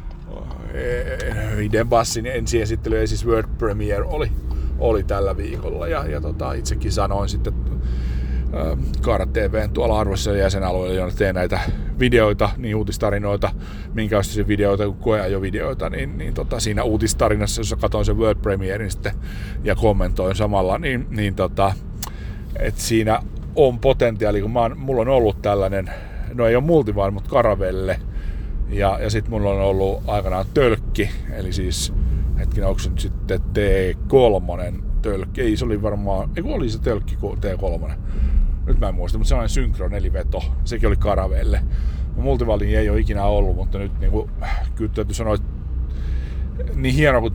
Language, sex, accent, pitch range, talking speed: Finnish, male, native, 90-110 Hz, 150 wpm